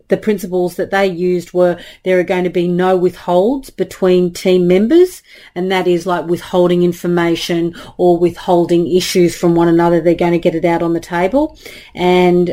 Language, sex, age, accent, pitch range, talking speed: English, female, 40-59, Australian, 175-200 Hz, 180 wpm